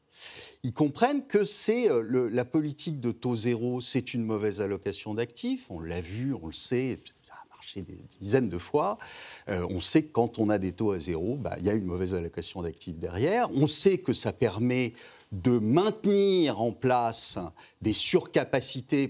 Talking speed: 190 wpm